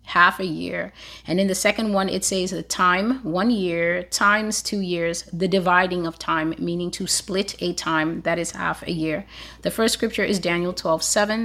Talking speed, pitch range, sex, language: 200 wpm, 175-215 Hz, female, English